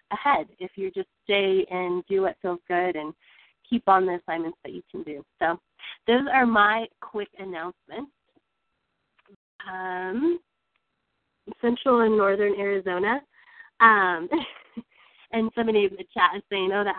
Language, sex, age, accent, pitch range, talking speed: English, female, 20-39, American, 180-220 Hz, 140 wpm